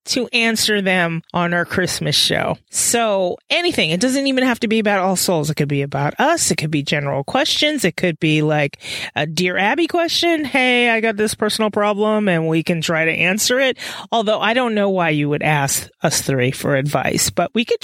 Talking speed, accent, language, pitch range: 215 wpm, American, English, 155-220 Hz